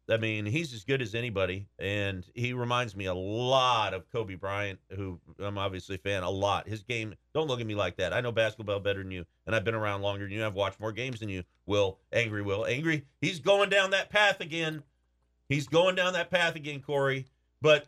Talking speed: 230 wpm